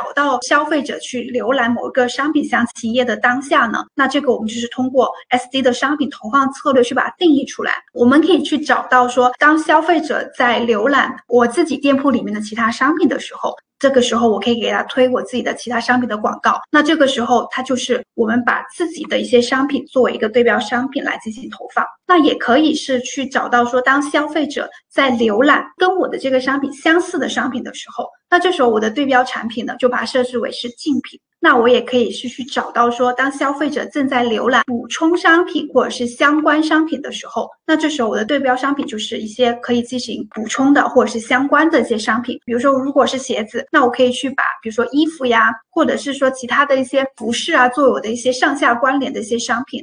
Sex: female